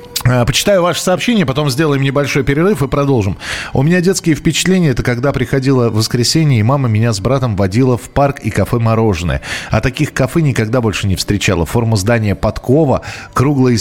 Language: Russian